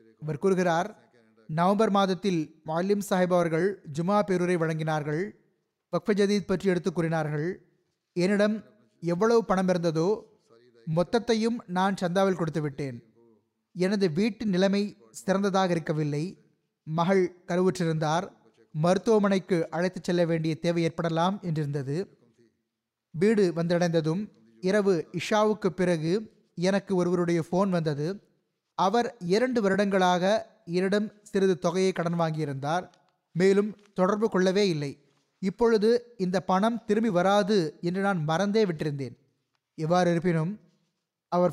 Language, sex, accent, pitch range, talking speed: Tamil, male, native, 165-200 Hz, 100 wpm